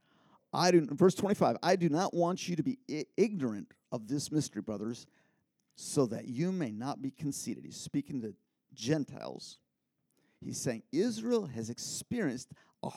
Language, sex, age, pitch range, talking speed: English, male, 50-69, 135-225 Hz, 155 wpm